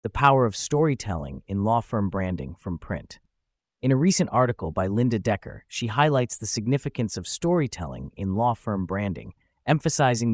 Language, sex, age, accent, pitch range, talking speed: English, male, 30-49, American, 95-130 Hz, 165 wpm